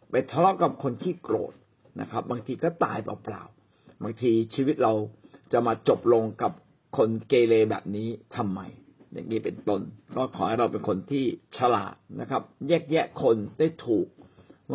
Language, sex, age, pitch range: Thai, male, 60-79, 115-155 Hz